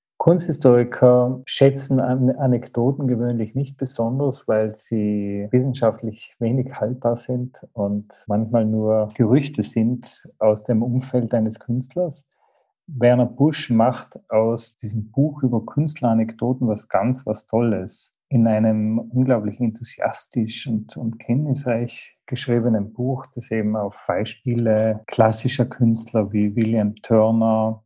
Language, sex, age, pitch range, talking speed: German, male, 40-59, 110-125 Hz, 110 wpm